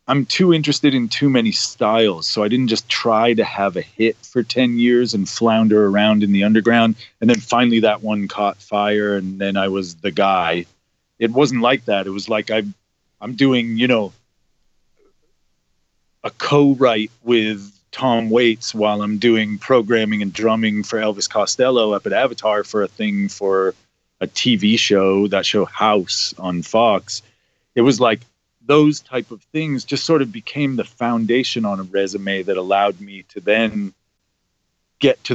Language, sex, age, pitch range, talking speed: English, male, 30-49, 100-130 Hz, 175 wpm